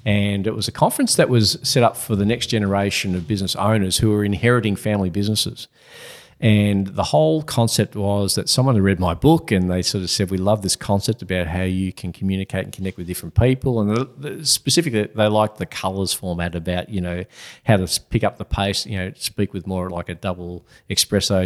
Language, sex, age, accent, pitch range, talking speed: English, male, 40-59, Australian, 95-115 Hz, 215 wpm